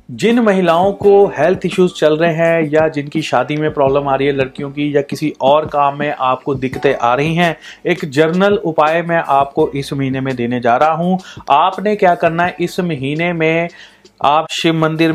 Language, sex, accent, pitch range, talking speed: Hindi, male, native, 145-175 Hz, 200 wpm